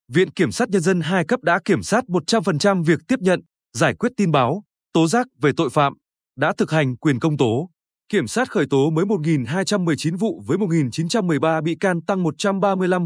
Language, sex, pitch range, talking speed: Vietnamese, male, 150-195 Hz, 200 wpm